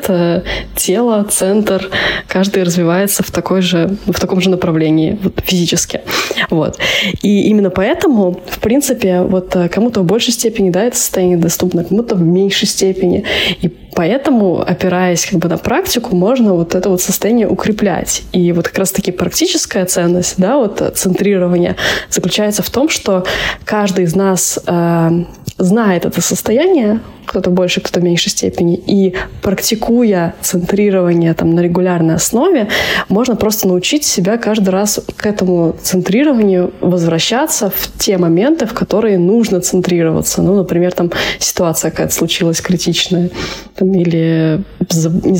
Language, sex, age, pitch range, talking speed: Russian, female, 20-39, 180-205 Hz, 120 wpm